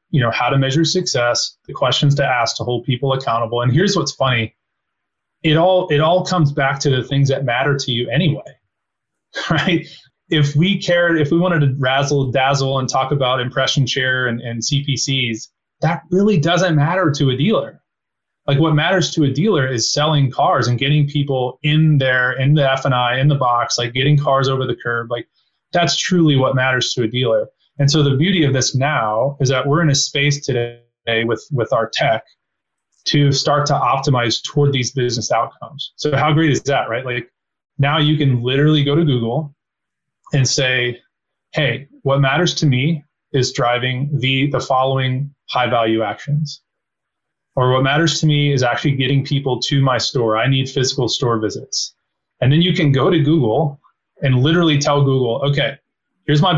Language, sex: English, male